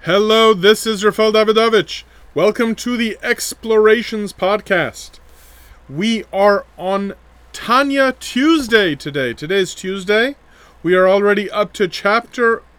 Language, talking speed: English, 115 wpm